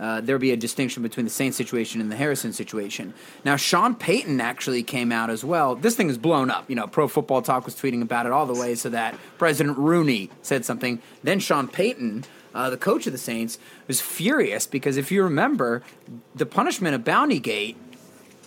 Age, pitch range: 30-49, 125-170 Hz